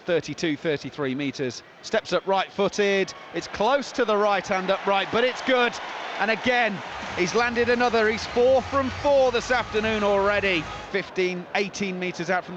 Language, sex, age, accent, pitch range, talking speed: English, male, 30-49, British, 205-280 Hz, 155 wpm